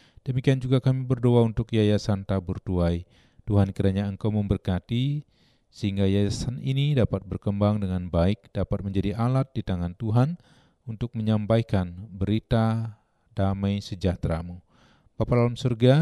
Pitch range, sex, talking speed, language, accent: 95-115 Hz, male, 125 wpm, Indonesian, native